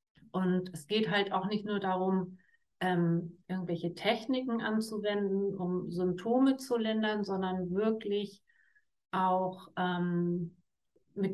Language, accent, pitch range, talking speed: German, German, 180-220 Hz, 110 wpm